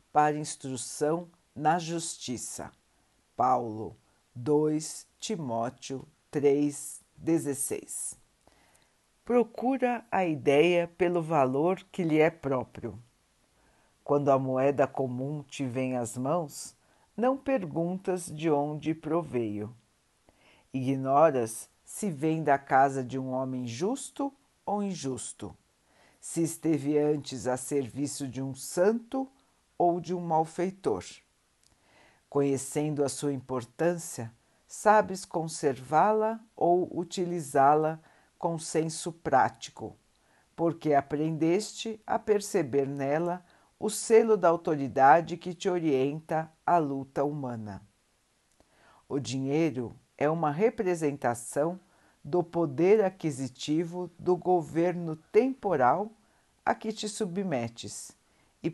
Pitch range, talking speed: 135-175 Hz, 100 wpm